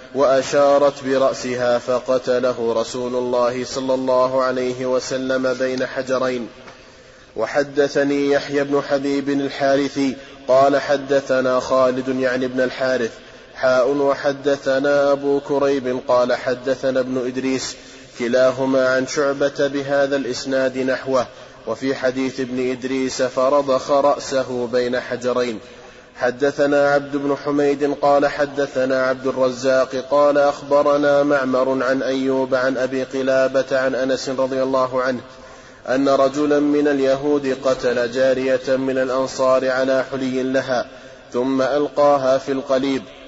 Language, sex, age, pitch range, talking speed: Arabic, male, 20-39, 130-140 Hz, 110 wpm